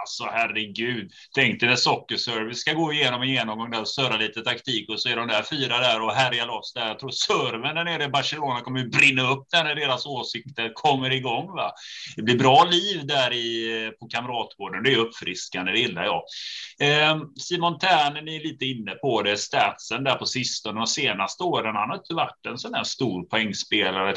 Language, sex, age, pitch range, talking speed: Swedish, male, 30-49, 115-145 Hz, 205 wpm